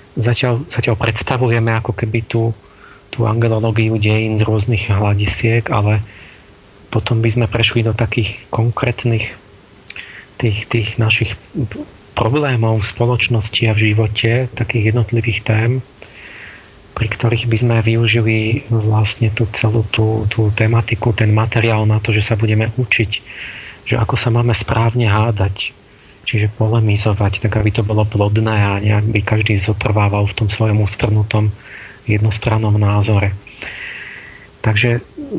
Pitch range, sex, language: 105-120 Hz, male, Slovak